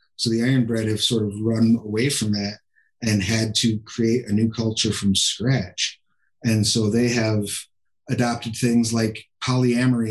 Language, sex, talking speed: English, male, 165 wpm